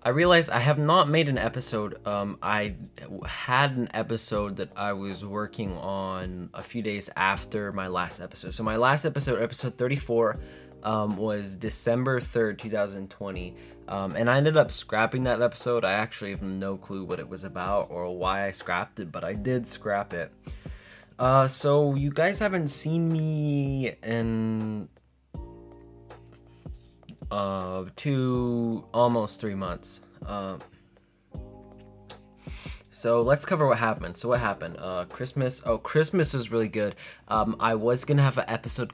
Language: English